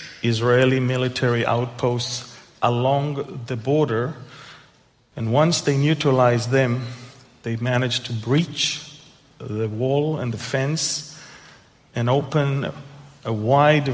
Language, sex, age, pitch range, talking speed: English, male, 40-59, 115-140 Hz, 105 wpm